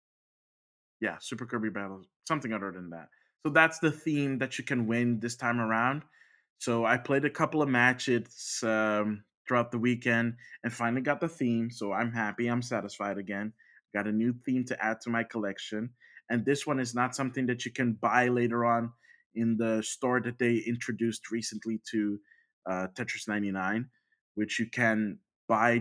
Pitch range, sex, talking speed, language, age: 110-130 Hz, male, 180 wpm, English, 20-39